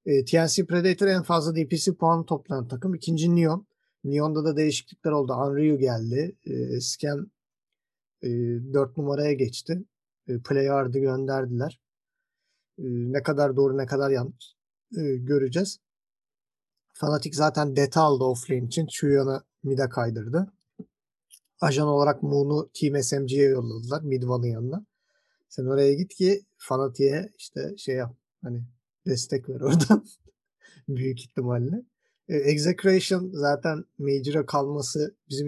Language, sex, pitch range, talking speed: Turkish, male, 130-170 Hz, 115 wpm